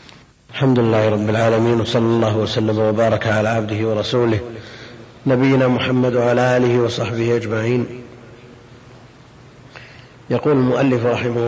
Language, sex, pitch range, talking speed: Arabic, male, 120-125 Hz, 105 wpm